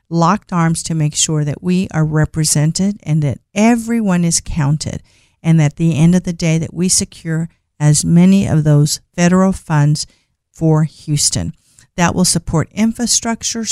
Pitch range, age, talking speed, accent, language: 155-190 Hz, 50-69, 160 wpm, American, English